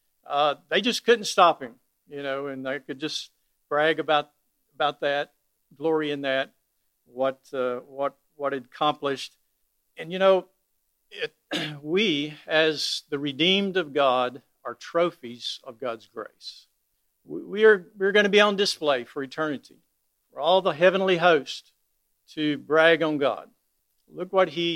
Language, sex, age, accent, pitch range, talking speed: English, male, 50-69, American, 140-180 Hz, 155 wpm